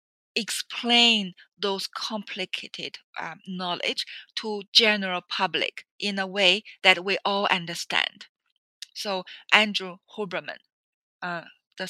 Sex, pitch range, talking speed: female, 180-220 Hz, 100 wpm